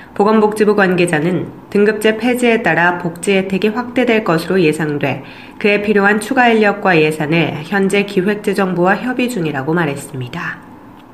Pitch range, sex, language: 170-215 Hz, female, Korean